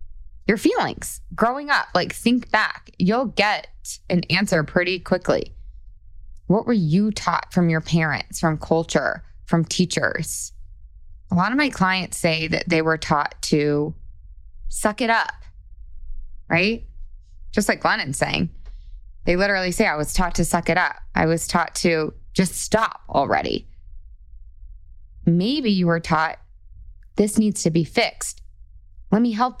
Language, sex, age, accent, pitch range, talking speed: English, female, 20-39, American, 150-215 Hz, 145 wpm